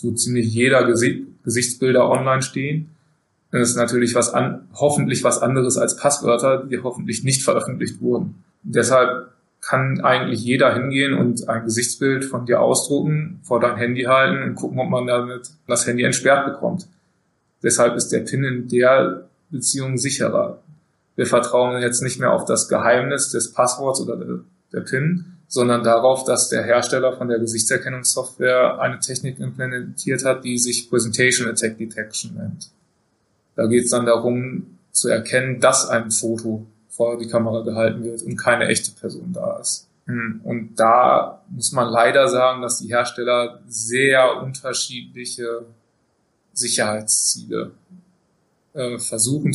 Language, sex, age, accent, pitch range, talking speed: German, male, 20-39, German, 120-130 Hz, 145 wpm